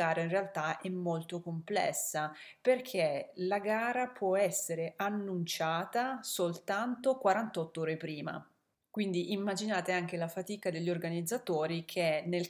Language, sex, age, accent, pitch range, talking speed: Italian, female, 30-49, native, 165-200 Hz, 115 wpm